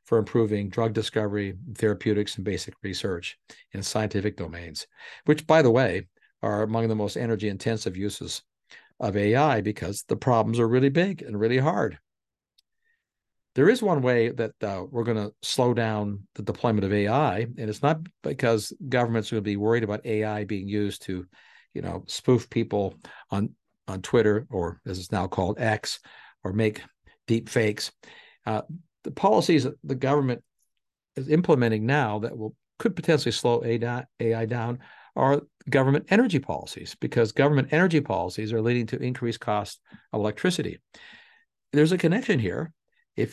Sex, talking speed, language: male, 160 wpm, English